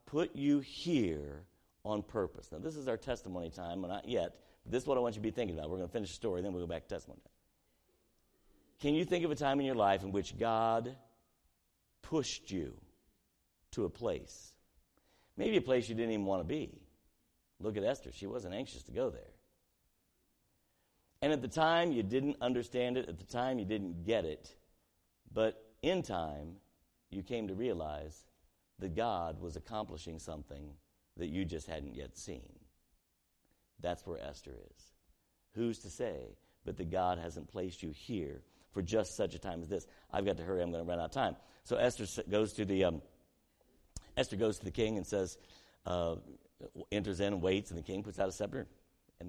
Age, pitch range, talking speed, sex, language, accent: 50-69, 85-120 Hz, 200 wpm, male, English, American